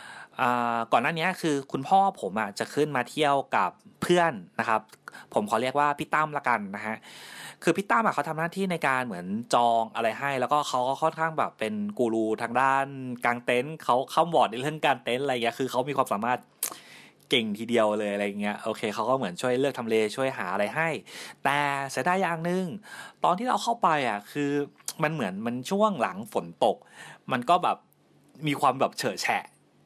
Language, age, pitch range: English, 30-49, 115-155 Hz